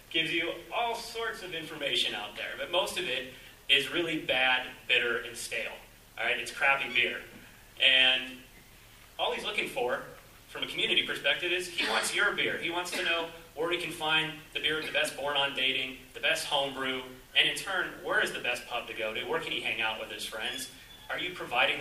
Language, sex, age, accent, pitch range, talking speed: Italian, male, 30-49, American, 125-165 Hz, 210 wpm